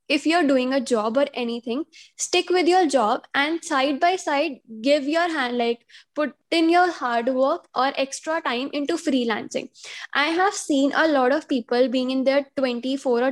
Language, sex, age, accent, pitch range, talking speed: English, female, 10-29, Indian, 250-310 Hz, 180 wpm